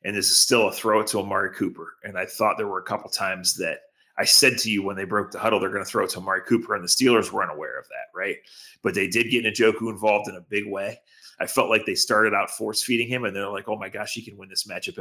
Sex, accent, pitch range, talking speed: male, American, 100-125 Hz, 300 wpm